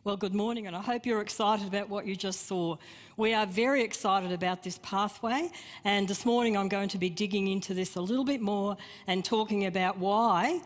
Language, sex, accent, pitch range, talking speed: English, female, Australian, 180-220 Hz, 215 wpm